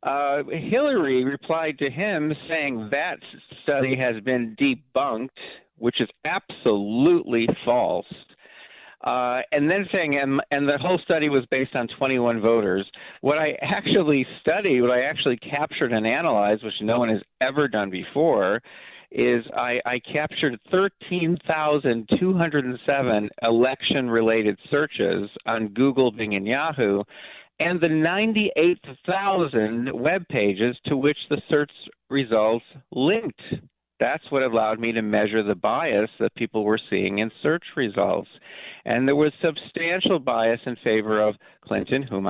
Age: 50-69